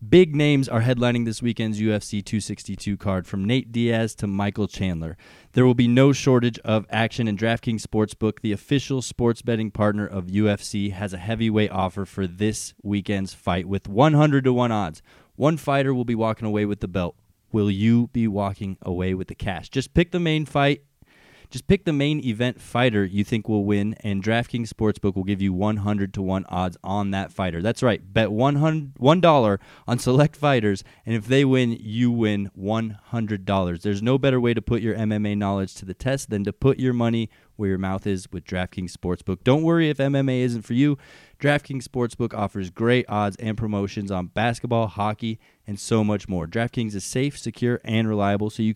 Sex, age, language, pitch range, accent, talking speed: male, 20-39, English, 100-125 Hz, American, 195 wpm